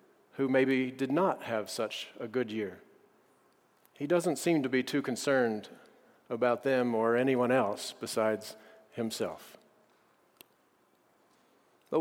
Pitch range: 125-165 Hz